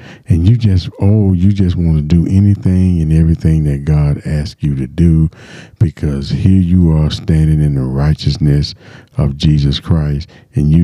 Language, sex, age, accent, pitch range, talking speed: English, male, 50-69, American, 80-105 Hz, 170 wpm